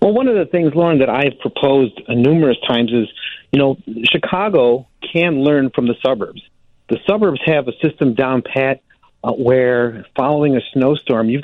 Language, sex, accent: English, male, American